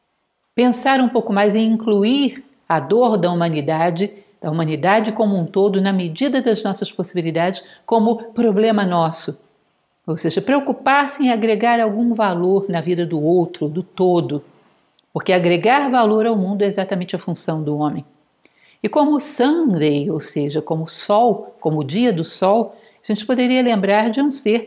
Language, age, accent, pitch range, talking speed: Portuguese, 60-79, Brazilian, 170-230 Hz, 165 wpm